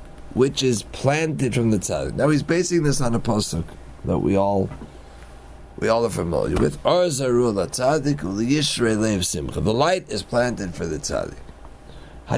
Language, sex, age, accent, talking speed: English, male, 30-49, American, 140 wpm